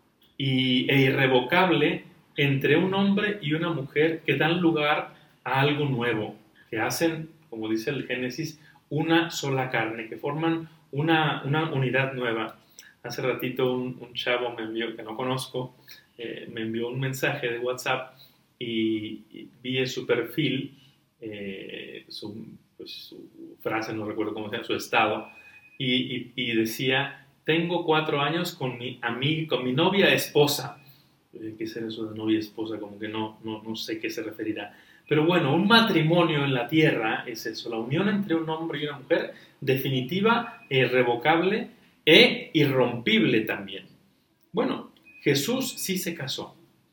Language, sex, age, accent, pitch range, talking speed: Spanish, male, 30-49, Mexican, 120-160 Hz, 155 wpm